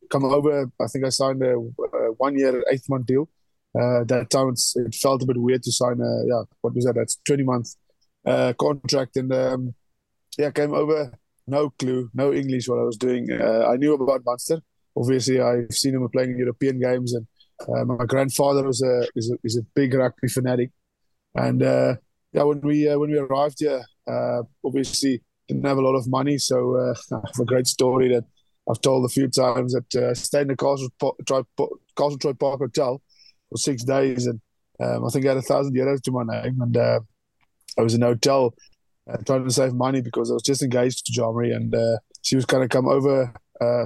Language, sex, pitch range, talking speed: English, male, 120-135 Hz, 210 wpm